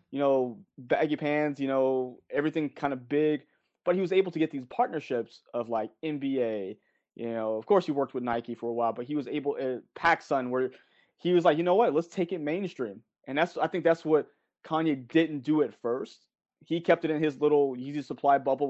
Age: 20-39